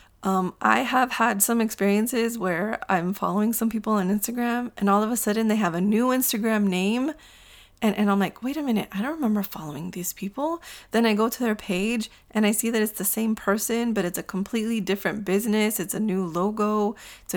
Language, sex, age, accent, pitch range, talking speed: English, female, 20-39, American, 190-240 Hz, 215 wpm